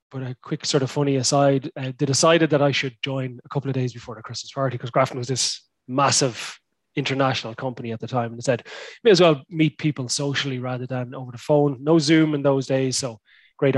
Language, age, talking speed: English, 20-39, 230 wpm